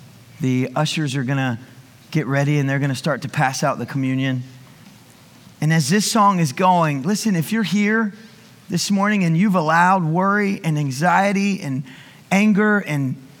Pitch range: 140-190 Hz